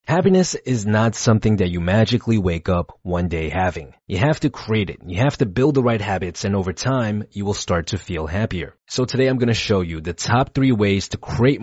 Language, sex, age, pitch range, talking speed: English, male, 30-49, 95-125 Hz, 235 wpm